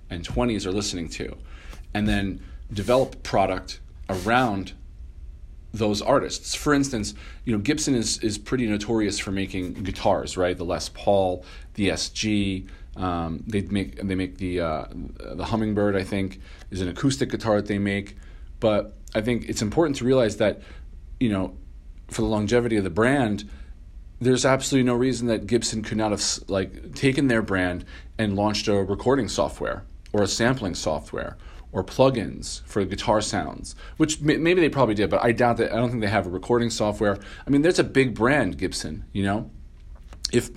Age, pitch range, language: 40-59, 90-115 Hz, English